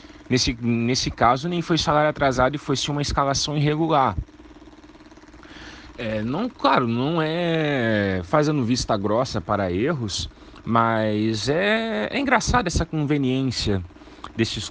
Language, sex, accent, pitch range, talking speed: Portuguese, male, Brazilian, 110-175 Hz, 110 wpm